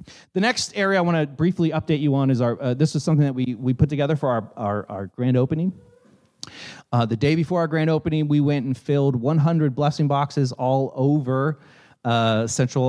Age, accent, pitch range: 30-49, American, 125-155 Hz